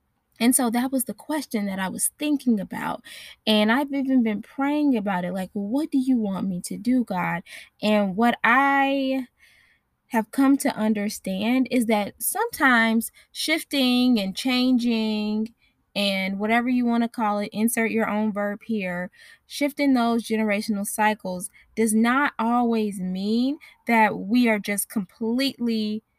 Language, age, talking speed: English, 10-29, 150 wpm